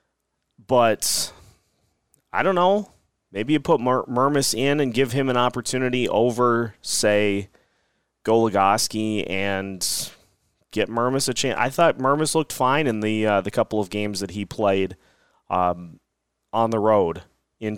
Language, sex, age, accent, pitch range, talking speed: English, male, 30-49, American, 110-155 Hz, 145 wpm